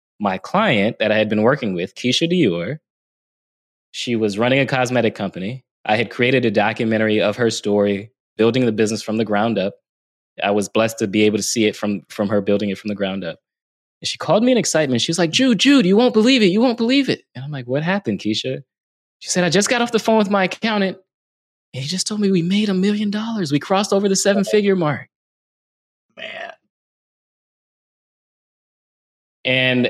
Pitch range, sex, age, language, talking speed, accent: 105-170 Hz, male, 20-39, English, 210 wpm, American